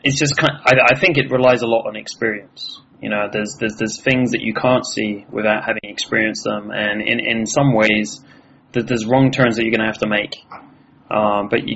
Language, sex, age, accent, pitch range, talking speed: English, male, 20-39, British, 110-125 Hz, 230 wpm